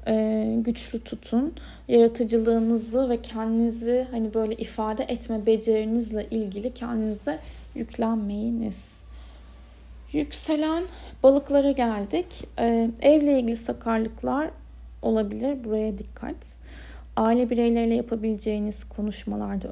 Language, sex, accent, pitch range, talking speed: Turkish, female, native, 205-245 Hz, 80 wpm